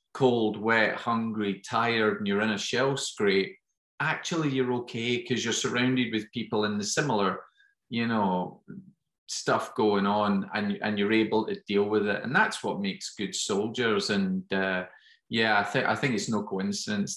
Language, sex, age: English, male, 30-49